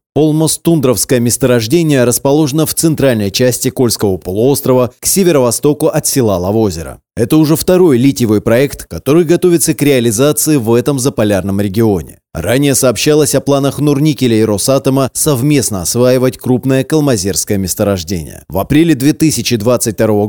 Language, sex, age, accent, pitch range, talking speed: Russian, male, 30-49, native, 110-145 Hz, 120 wpm